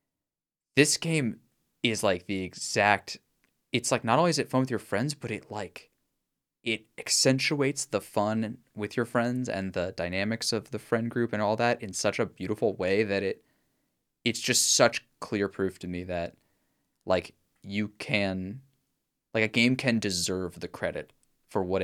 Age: 20-39